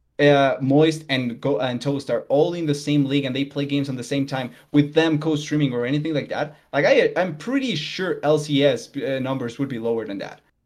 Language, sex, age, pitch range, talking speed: English, male, 20-39, 140-160 Hz, 225 wpm